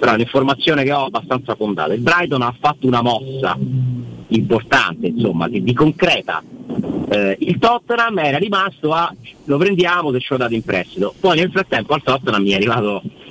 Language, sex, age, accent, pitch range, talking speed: Italian, male, 40-59, native, 105-150 Hz, 185 wpm